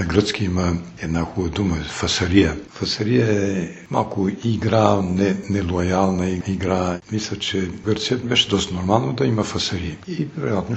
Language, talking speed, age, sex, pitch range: Bulgarian, 135 wpm, 60-79, male, 85-105 Hz